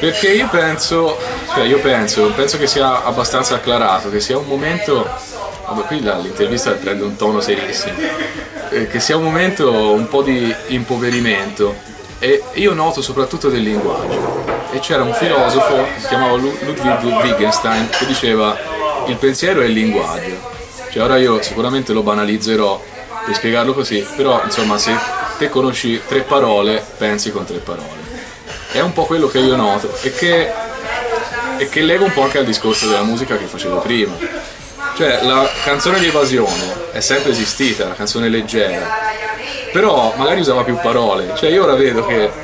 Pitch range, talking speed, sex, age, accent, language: 115-160 Hz, 165 wpm, male, 30-49, native, Italian